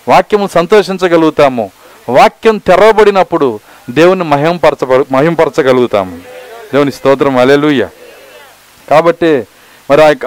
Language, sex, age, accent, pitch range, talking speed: Telugu, male, 50-69, native, 150-200 Hz, 80 wpm